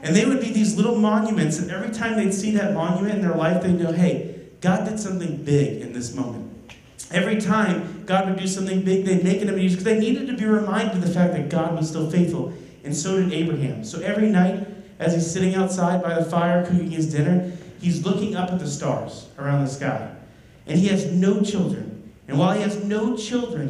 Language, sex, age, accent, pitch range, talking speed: English, male, 40-59, American, 165-200 Hz, 225 wpm